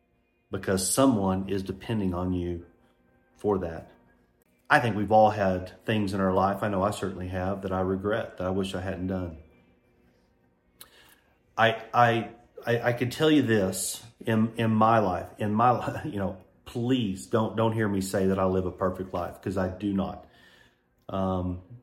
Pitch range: 95-110 Hz